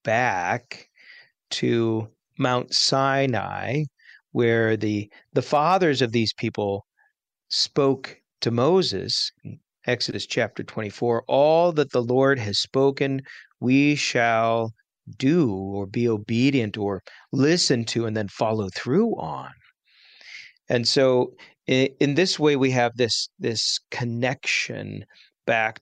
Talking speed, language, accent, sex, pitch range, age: 115 wpm, English, American, male, 110-135 Hz, 40-59